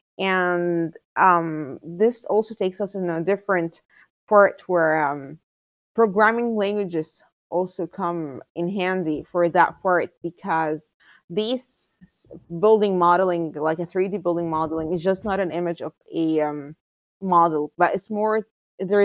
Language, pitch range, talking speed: English, 165-205 Hz, 135 wpm